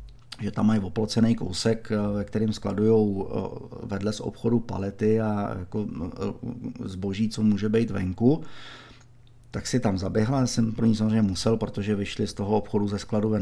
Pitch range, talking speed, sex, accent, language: 105-125 Hz, 155 wpm, male, native, Czech